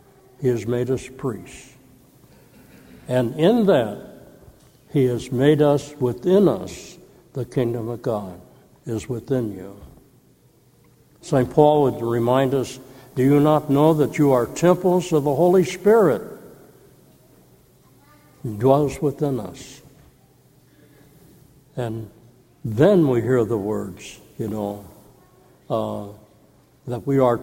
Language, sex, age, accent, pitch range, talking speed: English, male, 60-79, American, 120-150 Hz, 120 wpm